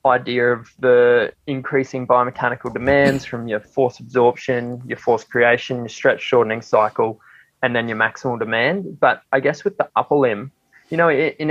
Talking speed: 165 wpm